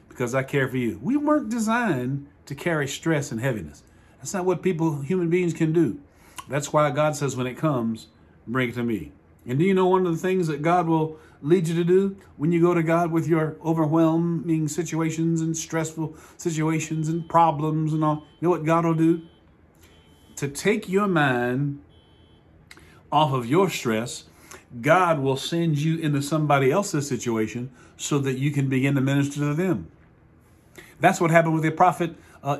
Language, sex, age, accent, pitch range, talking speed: English, male, 40-59, American, 130-180 Hz, 185 wpm